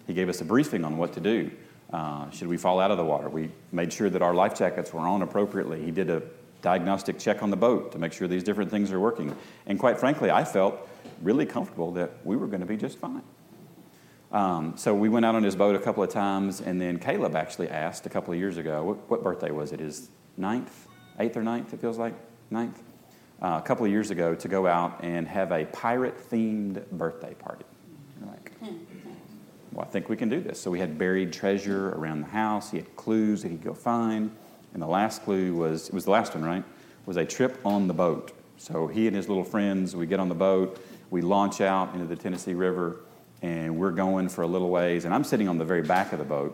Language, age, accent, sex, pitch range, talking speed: English, 40-59, American, male, 85-100 Hz, 235 wpm